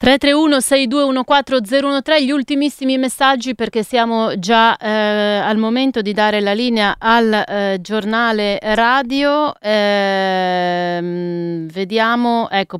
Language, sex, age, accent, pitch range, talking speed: Italian, female, 30-49, native, 170-220 Hz, 100 wpm